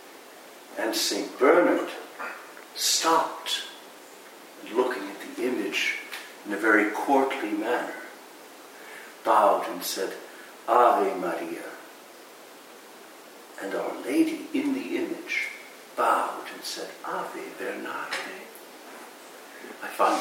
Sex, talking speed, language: male, 90 wpm, English